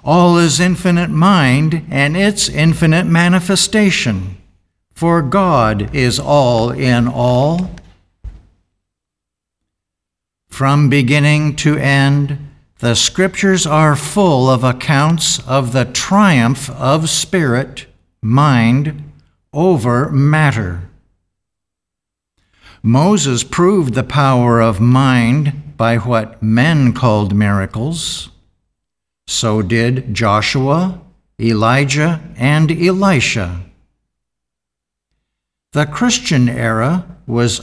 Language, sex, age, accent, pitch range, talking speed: English, male, 60-79, American, 105-160 Hz, 85 wpm